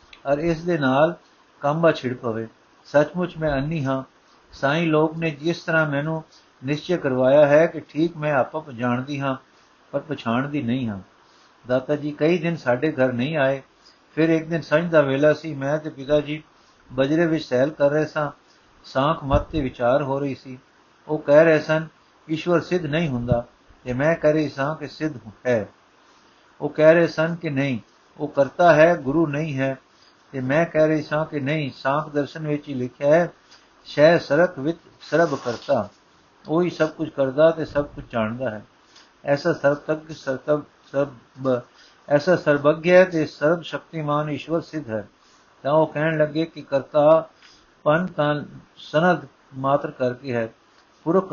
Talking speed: 165 wpm